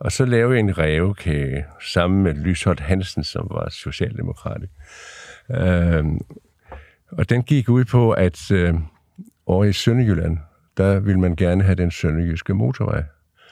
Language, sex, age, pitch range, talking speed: Danish, male, 60-79, 85-115 Hz, 140 wpm